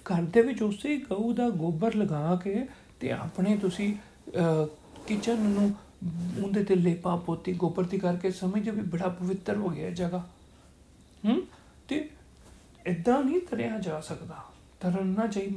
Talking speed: 145 wpm